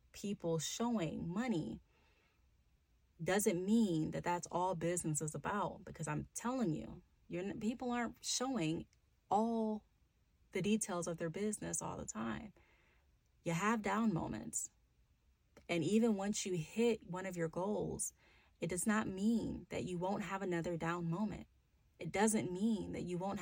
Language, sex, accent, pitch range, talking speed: English, female, American, 165-215 Hz, 145 wpm